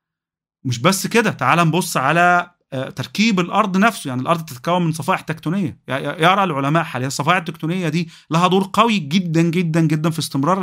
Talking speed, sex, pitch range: 170 wpm, male, 140-175 Hz